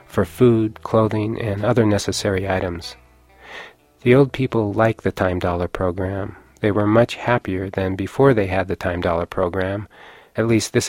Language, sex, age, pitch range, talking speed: English, male, 40-59, 95-110 Hz, 165 wpm